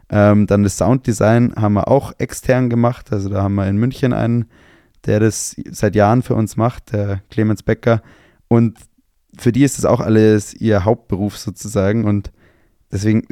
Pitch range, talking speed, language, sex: 100-120 Hz, 165 wpm, German, male